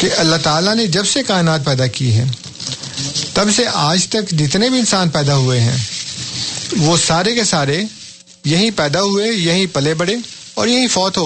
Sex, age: male, 50-69